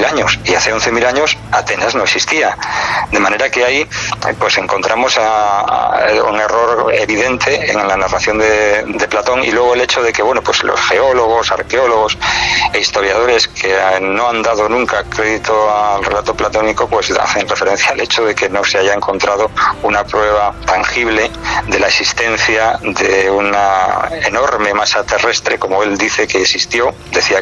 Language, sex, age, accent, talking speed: Spanish, male, 40-59, Spanish, 165 wpm